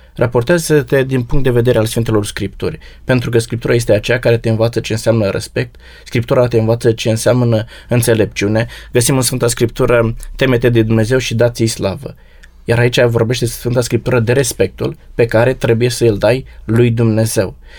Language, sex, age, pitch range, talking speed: Romanian, male, 20-39, 110-130 Hz, 165 wpm